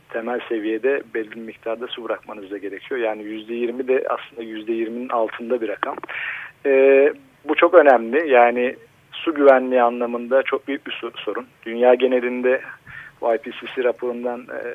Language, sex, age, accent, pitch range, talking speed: Turkish, male, 40-59, native, 115-140 Hz, 120 wpm